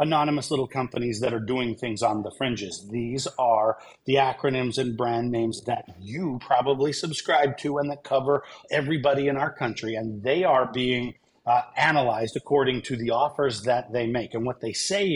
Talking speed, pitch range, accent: 180 wpm, 115-150 Hz, American